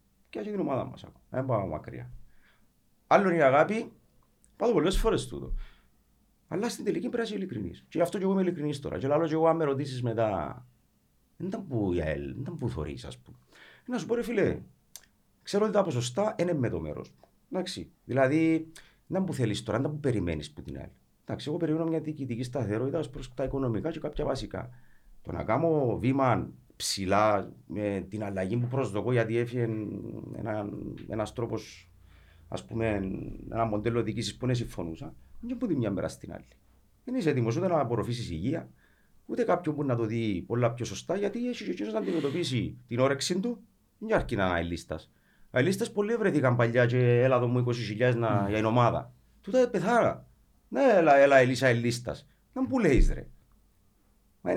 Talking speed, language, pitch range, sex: 185 wpm, Greek, 105-160 Hz, male